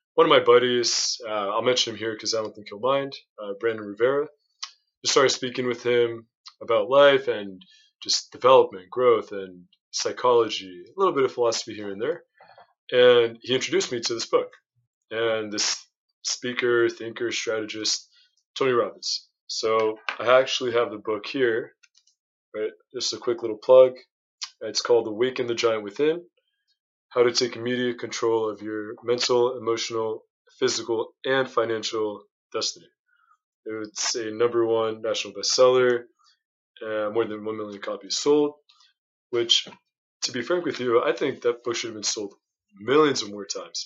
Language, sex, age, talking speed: English, male, 20-39, 165 wpm